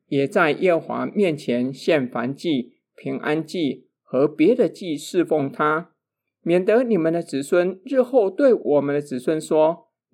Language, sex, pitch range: Chinese, male, 145-230 Hz